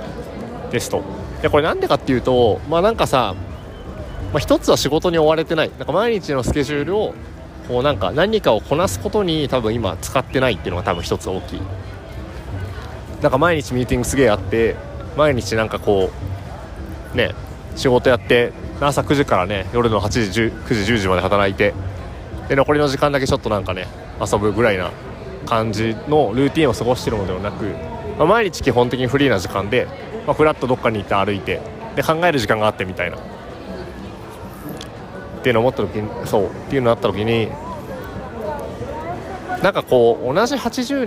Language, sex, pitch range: Japanese, male, 100-145 Hz